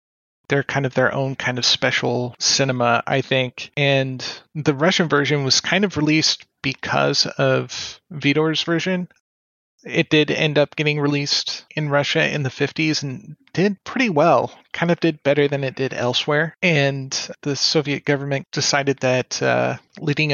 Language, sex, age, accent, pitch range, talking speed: English, male, 30-49, American, 130-150 Hz, 160 wpm